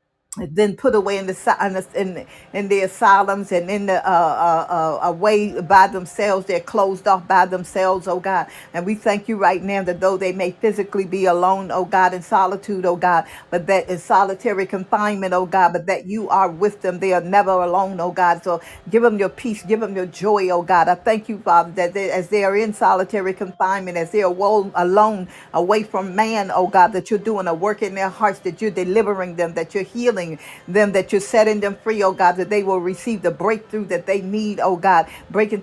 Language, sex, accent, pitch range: English, female, American, 185-210 Hz